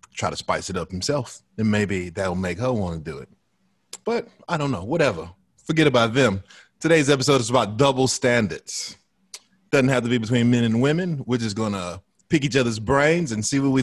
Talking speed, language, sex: 210 wpm, English, male